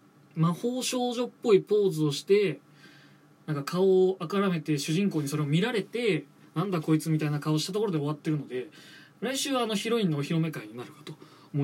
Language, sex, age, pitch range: Japanese, male, 20-39, 150-200 Hz